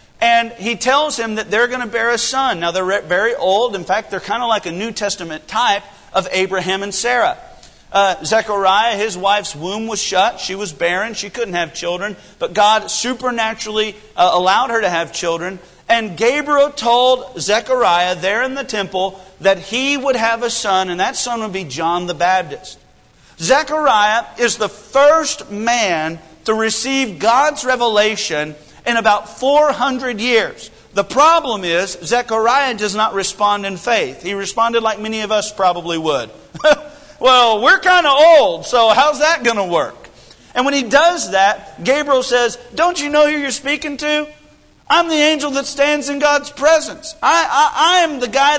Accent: American